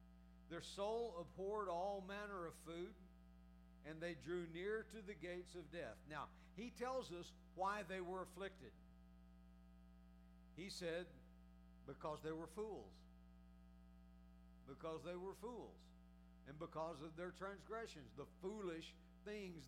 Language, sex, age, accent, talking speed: English, male, 60-79, American, 130 wpm